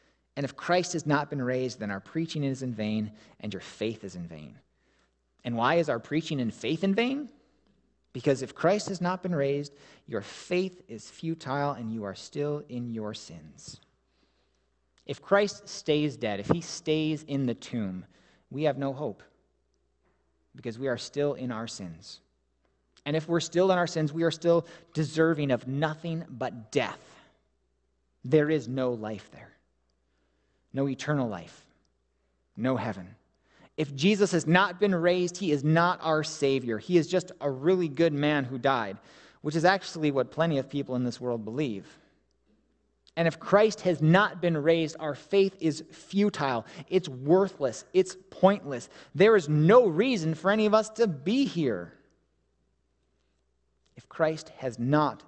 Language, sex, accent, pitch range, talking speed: English, male, American, 110-165 Hz, 165 wpm